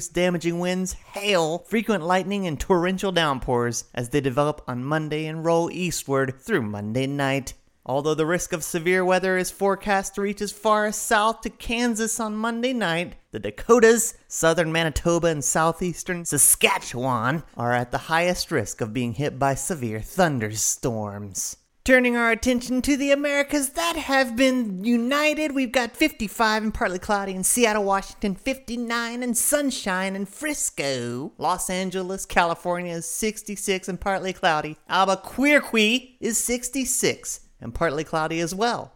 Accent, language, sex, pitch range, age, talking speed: American, English, male, 145-215 Hz, 30-49, 150 wpm